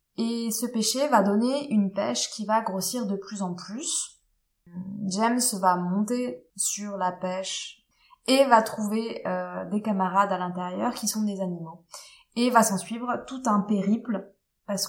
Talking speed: 160 wpm